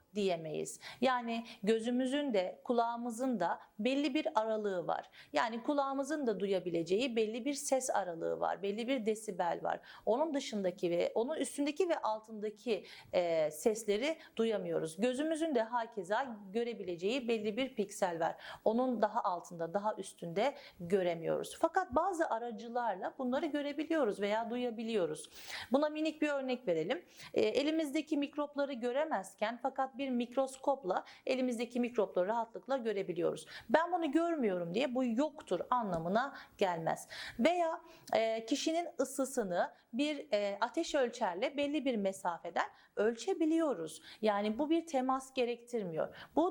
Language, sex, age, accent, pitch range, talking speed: Turkish, female, 40-59, native, 210-290 Hz, 120 wpm